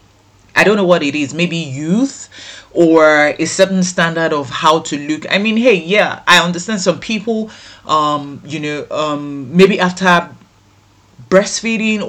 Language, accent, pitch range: English, Nigerian, 145-180 Hz